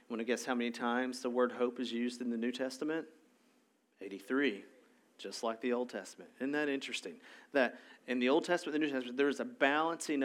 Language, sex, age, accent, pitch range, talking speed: English, male, 40-59, American, 125-150 Hz, 215 wpm